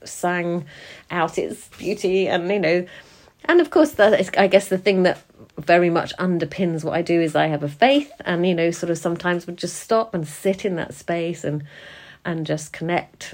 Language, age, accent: English, 30-49, British